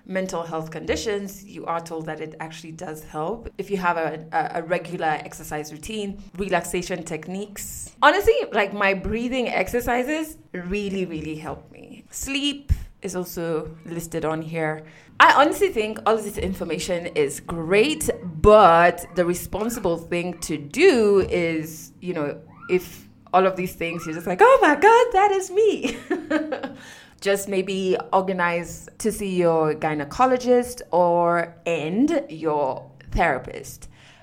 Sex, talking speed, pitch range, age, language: female, 140 wpm, 165-220 Hz, 20-39, English